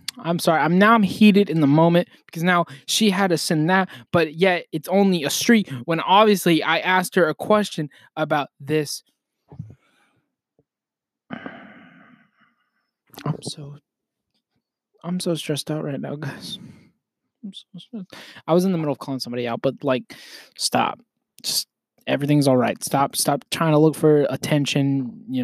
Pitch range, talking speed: 140-215 Hz, 155 wpm